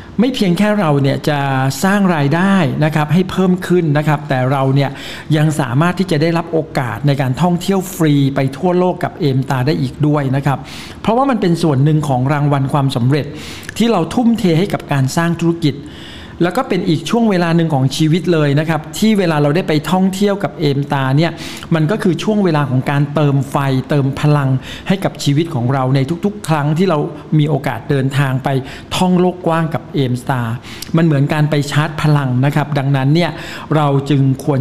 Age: 60-79